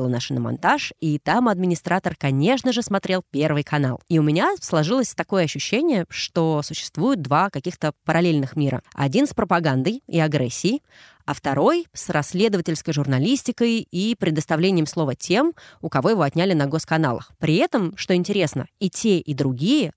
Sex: female